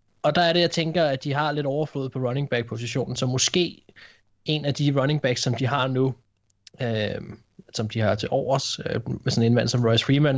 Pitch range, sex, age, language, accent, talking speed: 120-145 Hz, male, 20-39, Danish, native, 225 wpm